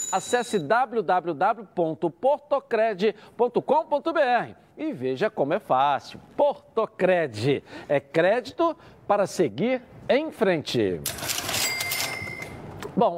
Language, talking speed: Portuguese, 70 wpm